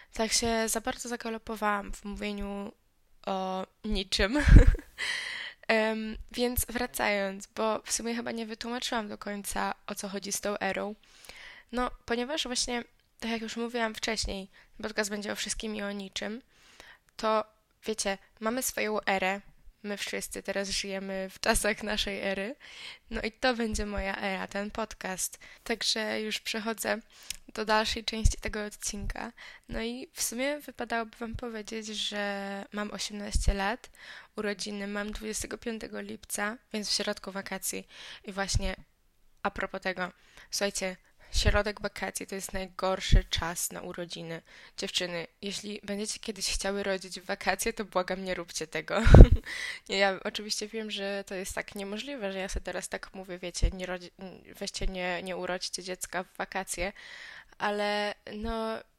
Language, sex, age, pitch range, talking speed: Polish, female, 10-29, 195-225 Hz, 145 wpm